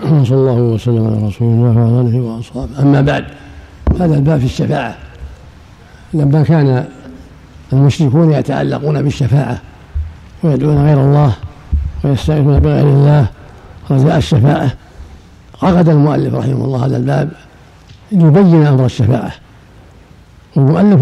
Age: 60-79